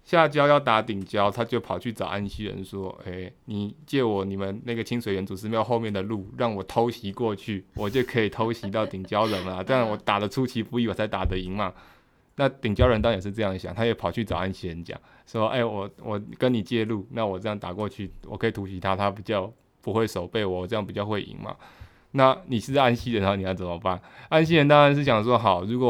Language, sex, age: Chinese, male, 20-39